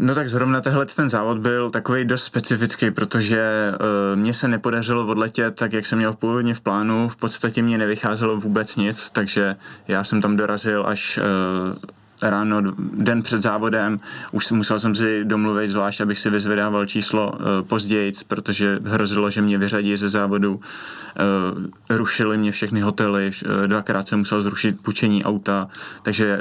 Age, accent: 20-39, native